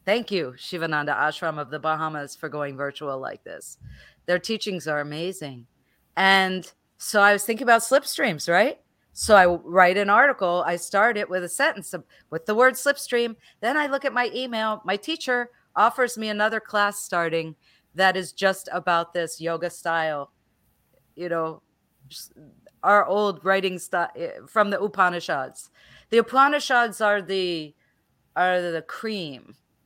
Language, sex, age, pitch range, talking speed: English, female, 40-59, 160-205 Hz, 155 wpm